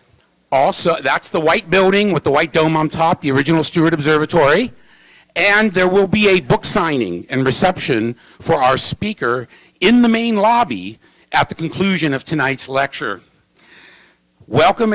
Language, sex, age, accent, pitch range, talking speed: English, male, 50-69, American, 140-185 Hz, 155 wpm